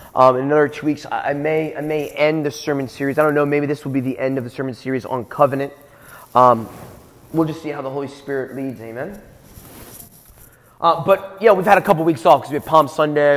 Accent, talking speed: American, 235 wpm